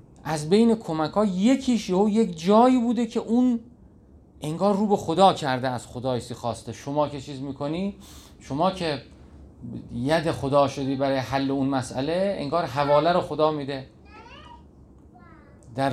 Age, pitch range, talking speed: 40-59, 120-165 Hz, 140 wpm